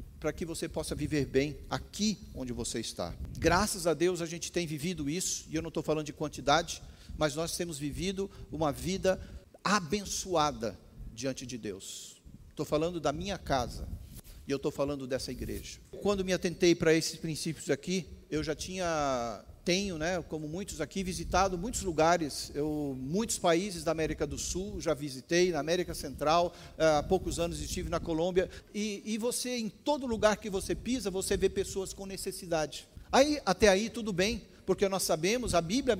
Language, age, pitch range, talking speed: Portuguese, 50-69, 150-195 Hz, 175 wpm